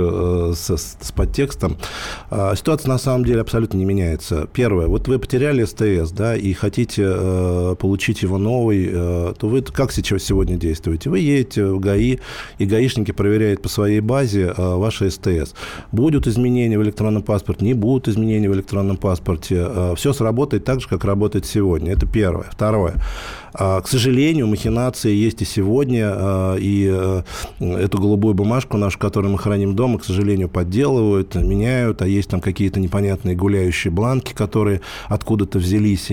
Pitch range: 95-120 Hz